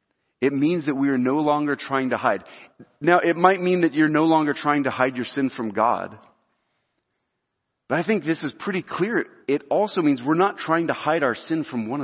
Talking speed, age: 220 wpm, 40-59